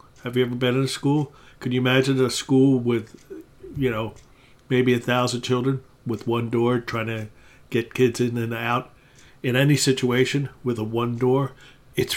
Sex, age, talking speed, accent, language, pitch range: male, 50-69, 180 wpm, American, English, 120-140 Hz